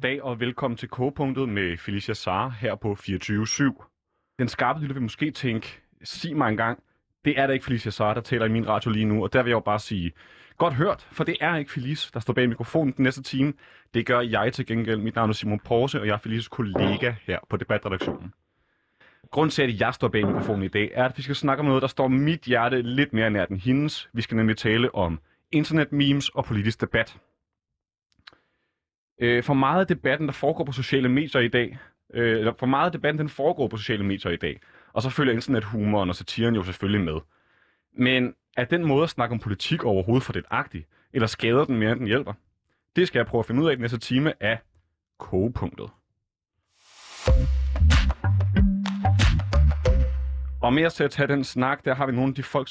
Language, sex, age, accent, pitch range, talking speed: Danish, male, 30-49, native, 105-135 Hz, 210 wpm